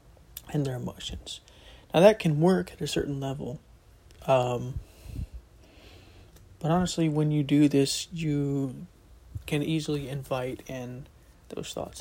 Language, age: English, 30-49